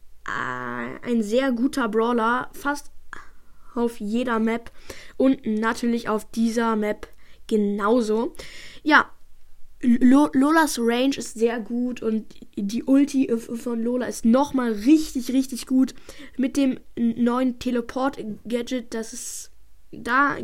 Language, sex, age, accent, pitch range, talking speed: German, female, 10-29, German, 230-270 Hz, 115 wpm